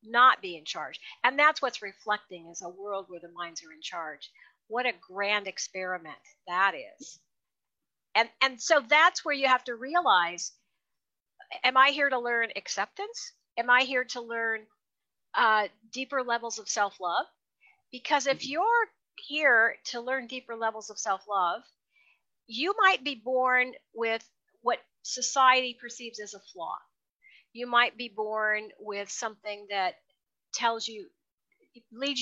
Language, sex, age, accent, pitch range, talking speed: English, female, 50-69, American, 205-290 Hz, 145 wpm